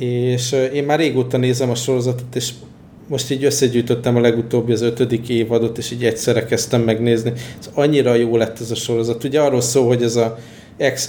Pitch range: 115-125 Hz